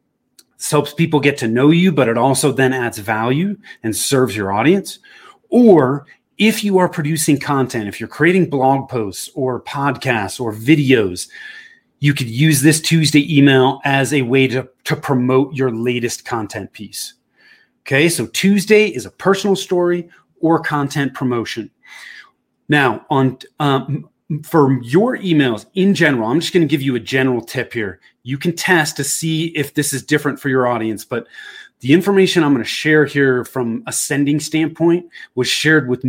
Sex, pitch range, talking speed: male, 125-160 Hz, 170 wpm